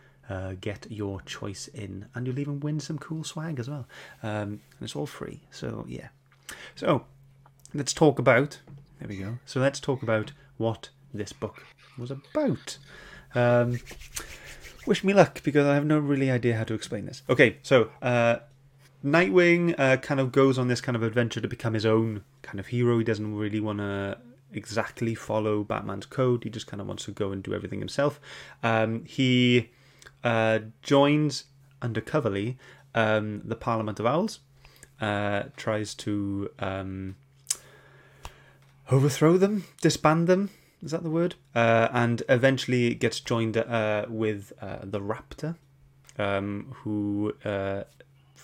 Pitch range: 105-135 Hz